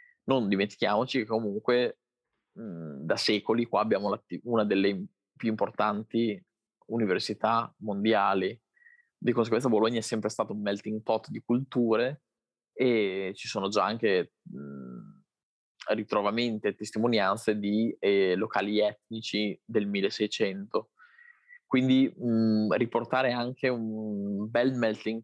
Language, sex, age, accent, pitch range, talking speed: Italian, male, 20-39, native, 105-125 Hz, 105 wpm